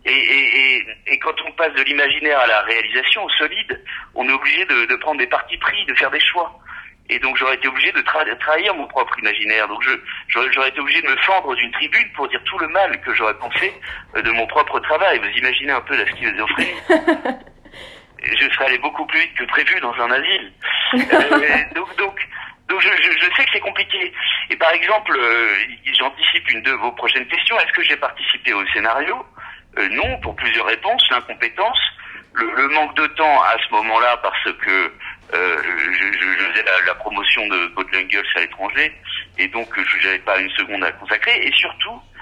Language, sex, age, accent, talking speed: French, male, 50-69, French, 200 wpm